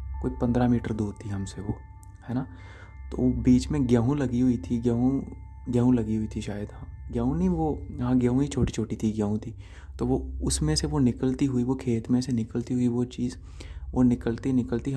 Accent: native